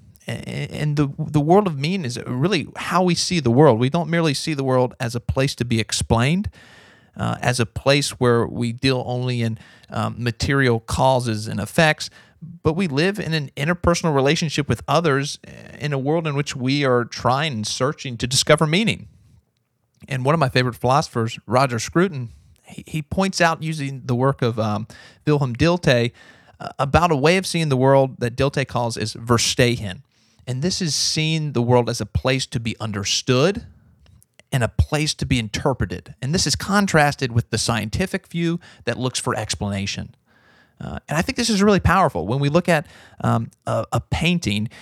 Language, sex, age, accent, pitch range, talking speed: English, male, 40-59, American, 115-155 Hz, 185 wpm